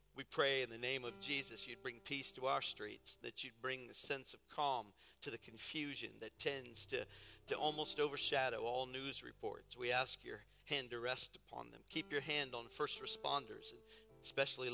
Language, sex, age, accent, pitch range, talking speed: English, male, 50-69, American, 115-145 Hz, 195 wpm